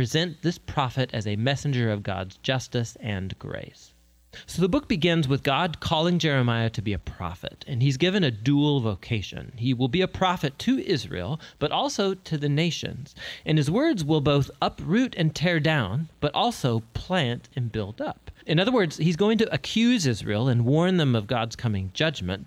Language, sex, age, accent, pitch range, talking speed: English, male, 40-59, American, 115-165 Hz, 190 wpm